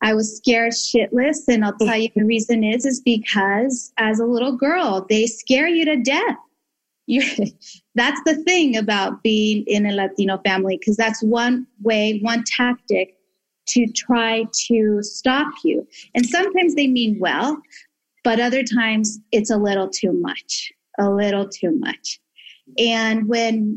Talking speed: 155 wpm